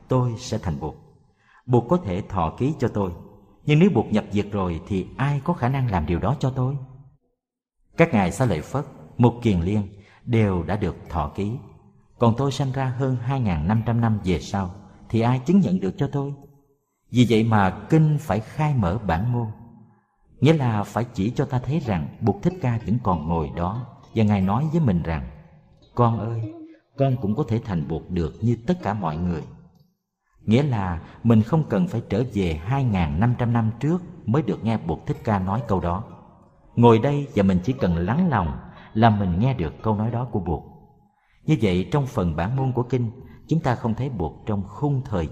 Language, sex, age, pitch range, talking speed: Vietnamese, male, 50-69, 100-140 Hz, 205 wpm